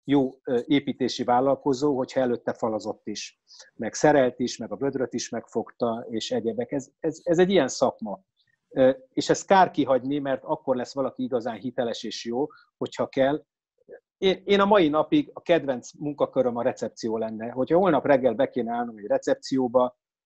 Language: Hungarian